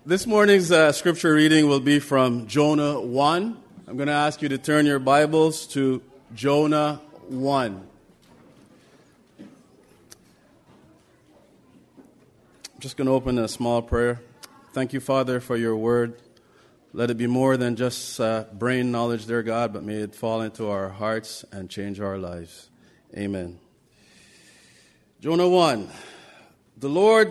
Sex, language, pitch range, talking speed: male, English, 115-150 Hz, 140 wpm